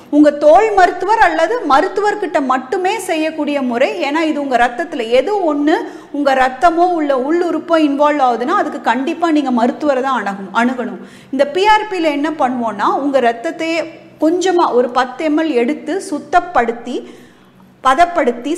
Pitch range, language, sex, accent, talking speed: 260-335 Hz, Tamil, female, native, 130 wpm